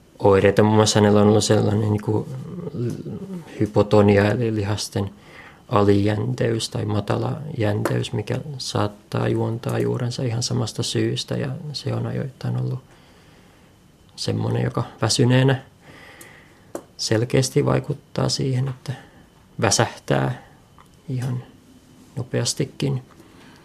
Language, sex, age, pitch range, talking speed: Finnish, male, 20-39, 105-130 Hz, 90 wpm